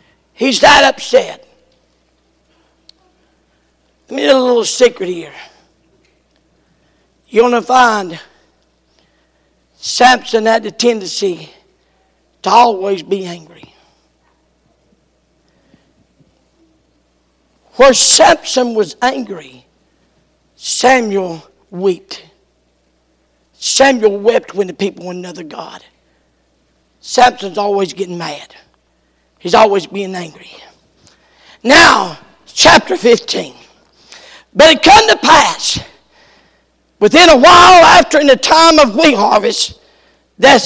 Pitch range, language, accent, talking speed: 195-290 Hz, English, American, 90 wpm